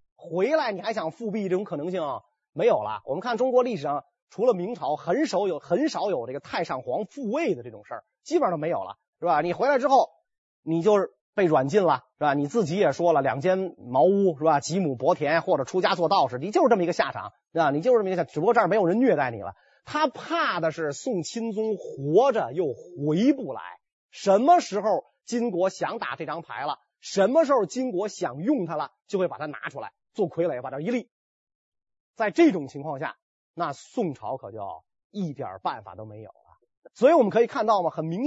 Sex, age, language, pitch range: male, 30-49, Chinese, 165-255 Hz